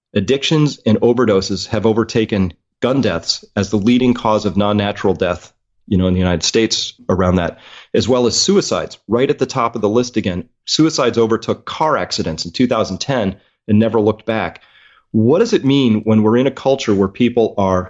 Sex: male